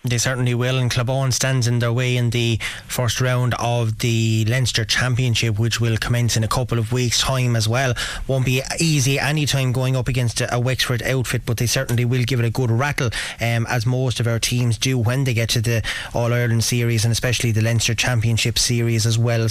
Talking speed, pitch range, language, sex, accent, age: 215 wpm, 115-140 Hz, English, male, Irish, 20-39